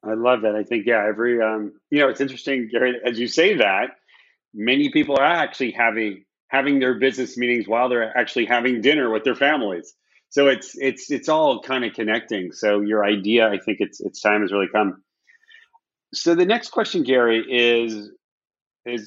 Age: 30-49